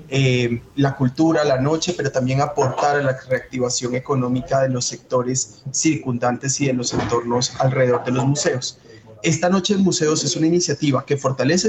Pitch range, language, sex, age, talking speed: 130-160 Hz, Spanish, male, 30-49, 170 wpm